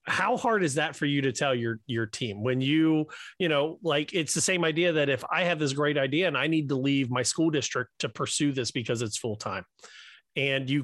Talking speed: 240 wpm